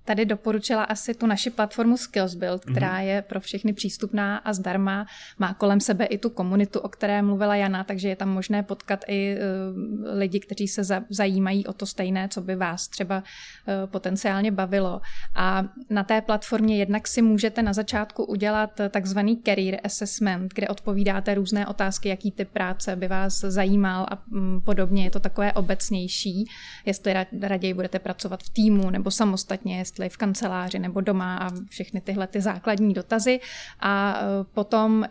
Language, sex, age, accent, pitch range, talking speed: Czech, female, 30-49, native, 195-215 Hz, 155 wpm